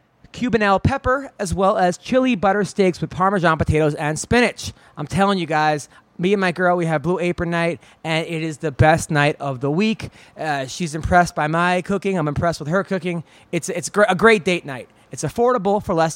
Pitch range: 170-220 Hz